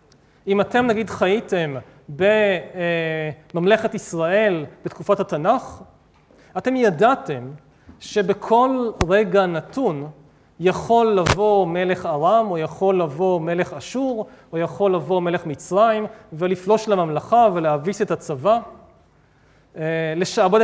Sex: male